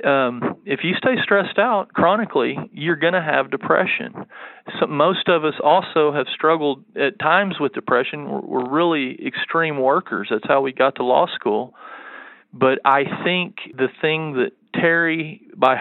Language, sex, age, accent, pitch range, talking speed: English, male, 40-59, American, 135-165 Hz, 160 wpm